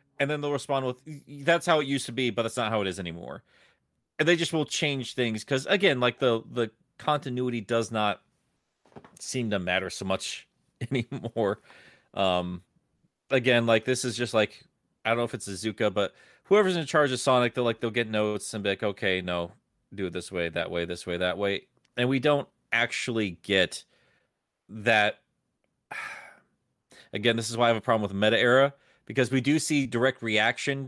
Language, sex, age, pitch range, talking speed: English, male, 30-49, 100-130 Hz, 195 wpm